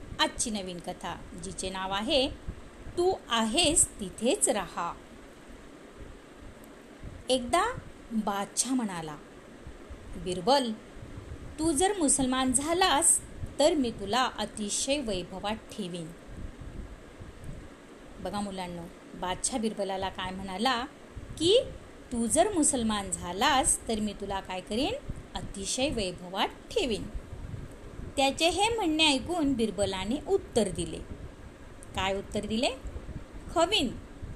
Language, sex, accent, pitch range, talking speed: Marathi, female, native, 205-295 Hz, 95 wpm